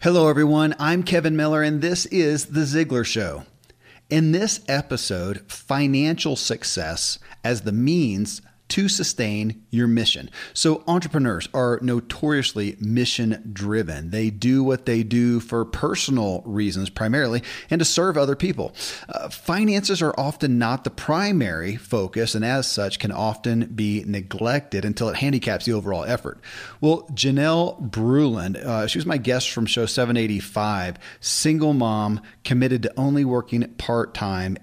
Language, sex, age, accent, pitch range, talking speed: English, male, 40-59, American, 105-140 Hz, 140 wpm